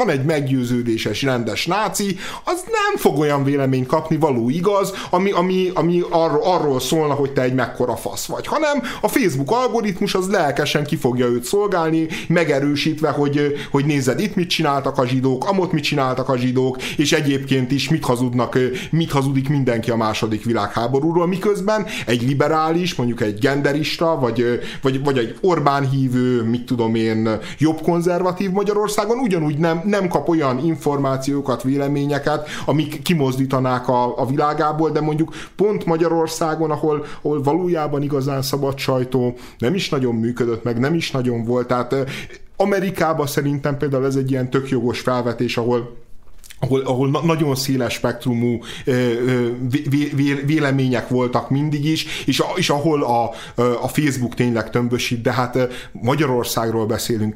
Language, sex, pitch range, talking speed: Hungarian, male, 125-160 Hz, 155 wpm